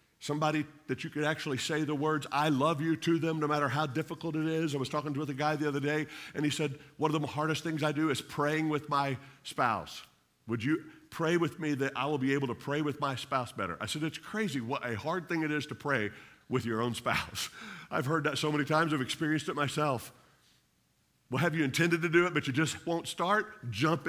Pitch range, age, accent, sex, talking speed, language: 135-165 Hz, 50-69, American, male, 245 wpm, English